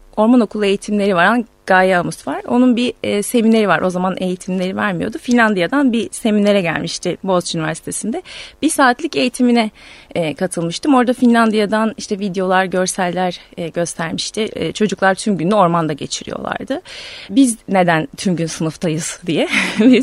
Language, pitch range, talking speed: Turkish, 180-245 Hz, 125 wpm